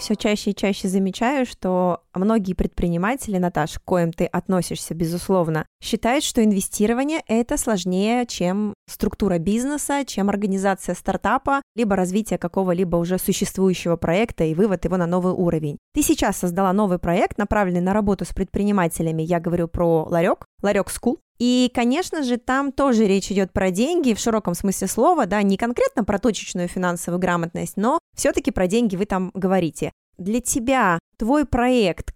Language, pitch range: Russian, 185-235 Hz